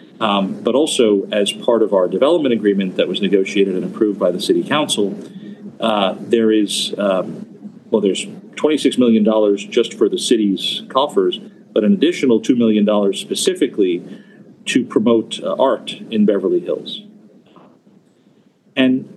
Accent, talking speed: American, 140 wpm